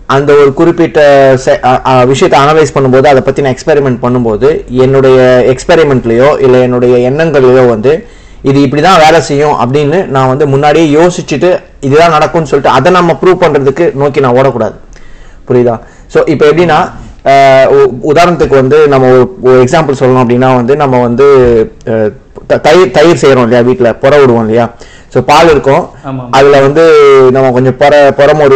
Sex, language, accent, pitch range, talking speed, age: male, Tamil, native, 125-145 Hz, 130 wpm, 30-49